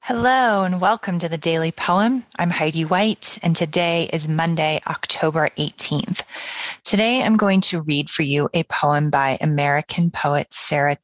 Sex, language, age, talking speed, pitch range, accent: female, English, 30-49, 160 wpm, 145-180 Hz, American